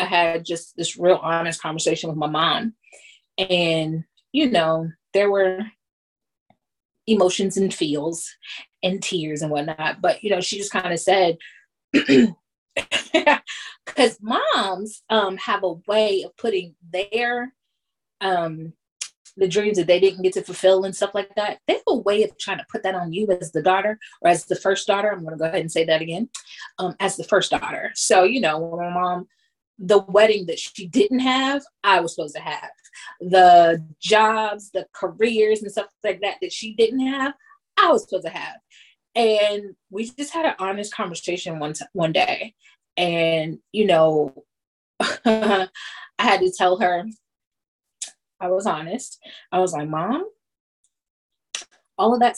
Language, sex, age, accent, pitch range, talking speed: English, female, 20-39, American, 175-220 Hz, 170 wpm